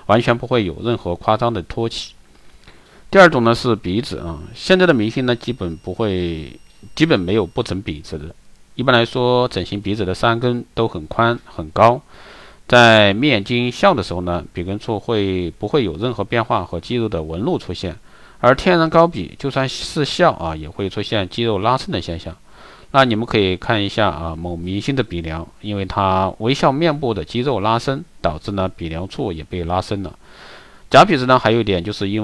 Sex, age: male, 50-69